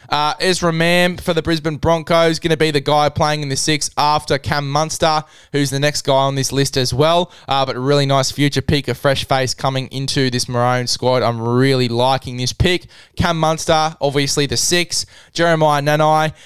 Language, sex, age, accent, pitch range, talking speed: English, male, 20-39, Australian, 130-155 Hz, 195 wpm